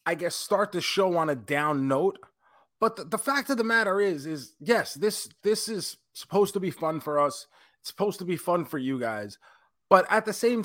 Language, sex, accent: English, male, American